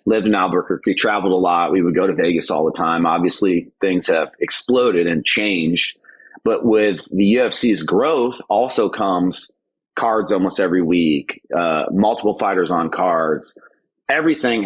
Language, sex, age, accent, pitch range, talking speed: English, male, 30-49, American, 95-115 Hz, 155 wpm